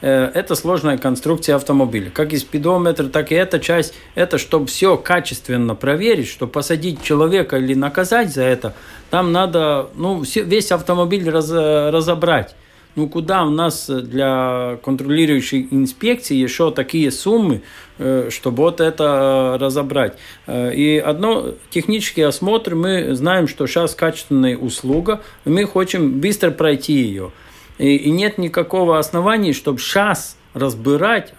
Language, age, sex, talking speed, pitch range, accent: Russian, 50-69, male, 130 wpm, 140-180 Hz, native